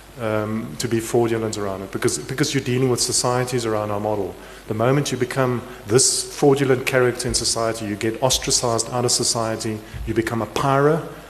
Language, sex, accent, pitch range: English, male, German, 110-125 Hz